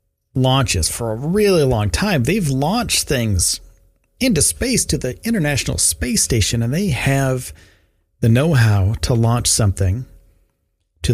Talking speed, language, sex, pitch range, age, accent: 135 wpm, English, male, 95-150 Hz, 40-59, American